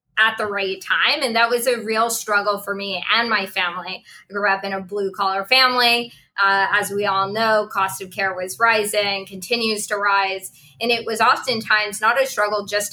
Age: 20-39